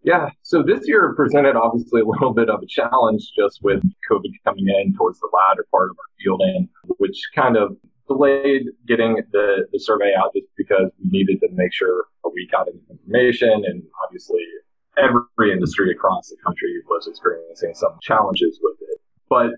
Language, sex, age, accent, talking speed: English, male, 30-49, American, 180 wpm